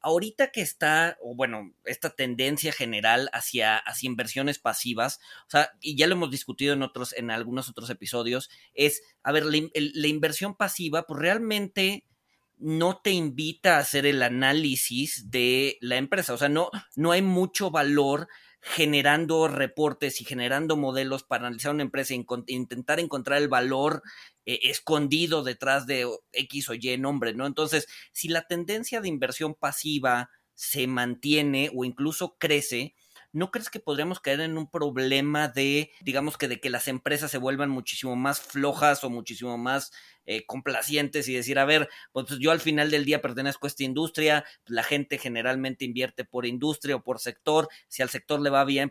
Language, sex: Spanish, male